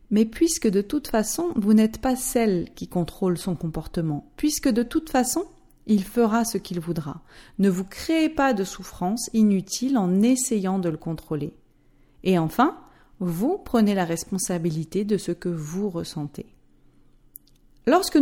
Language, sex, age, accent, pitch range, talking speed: French, female, 40-59, French, 175-265 Hz, 150 wpm